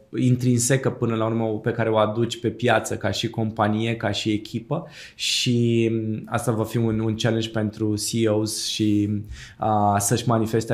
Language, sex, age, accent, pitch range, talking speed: Romanian, male, 20-39, native, 110-120 Hz, 160 wpm